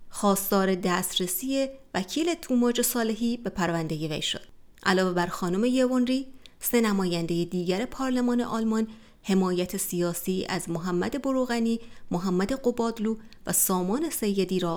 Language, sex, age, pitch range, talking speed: Persian, female, 30-49, 180-235 Hz, 120 wpm